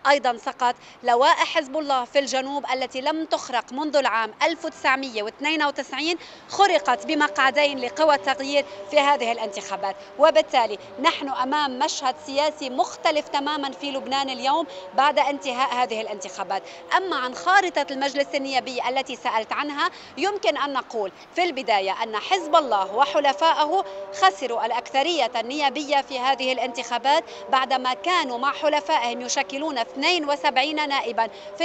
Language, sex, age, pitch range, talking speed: Arabic, female, 30-49, 250-305 Hz, 125 wpm